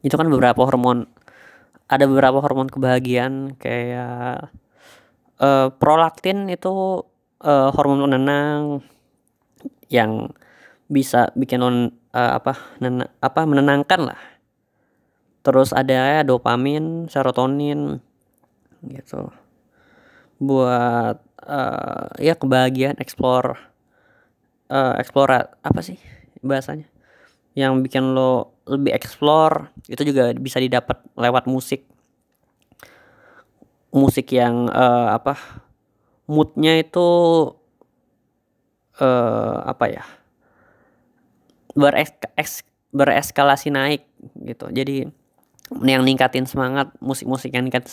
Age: 20-39